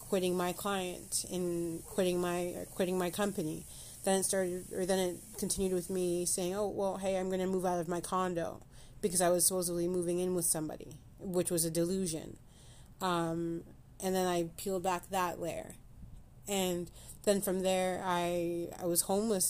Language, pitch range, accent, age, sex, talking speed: English, 170-190 Hz, American, 30-49, female, 180 wpm